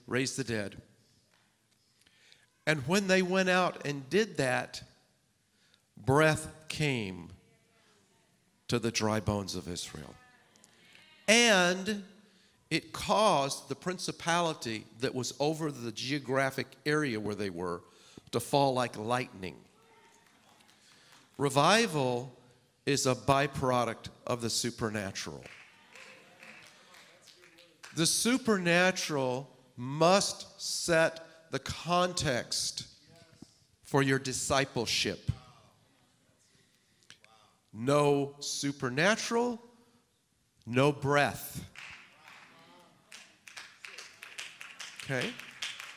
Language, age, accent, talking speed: English, 50-69, American, 75 wpm